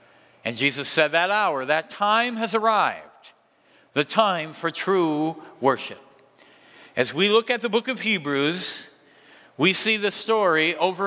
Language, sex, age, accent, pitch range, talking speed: English, male, 50-69, American, 155-215 Hz, 145 wpm